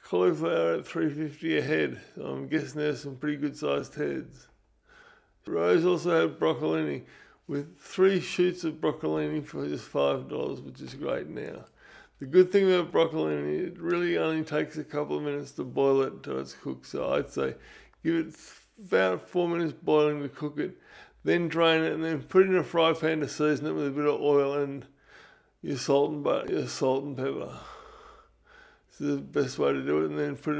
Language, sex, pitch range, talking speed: English, male, 130-175 Hz, 190 wpm